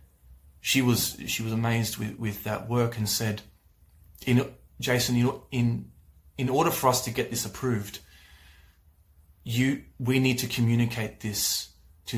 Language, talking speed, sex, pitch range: English, 140 wpm, male, 95-120 Hz